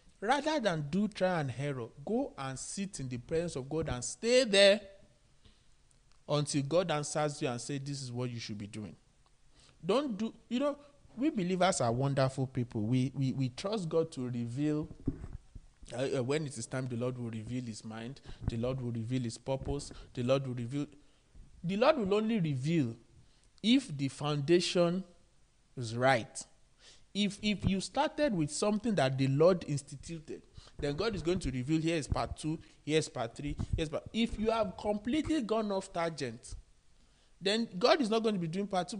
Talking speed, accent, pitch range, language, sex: 190 wpm, Nigerian, 130-195 Hz, English, male